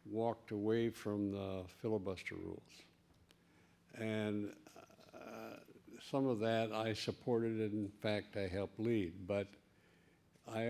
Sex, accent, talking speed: male, American, 120 wpm